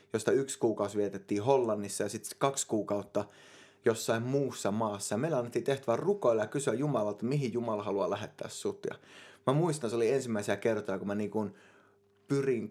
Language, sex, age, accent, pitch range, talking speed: Finnish, male, 20-39, native, 100-120 Hz, 175 wpm